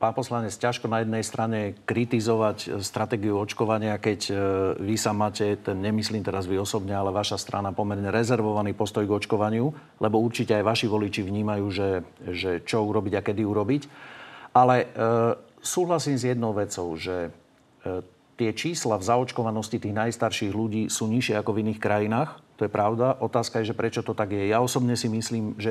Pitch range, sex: 105-120 Hz, male